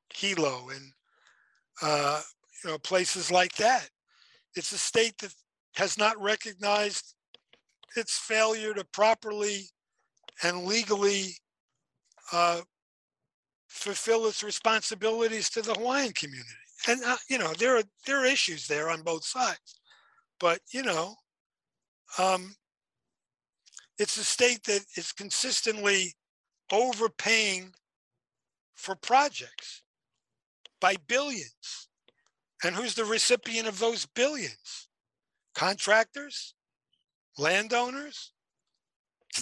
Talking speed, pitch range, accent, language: 100 wpm, 185-250 Hz, American, English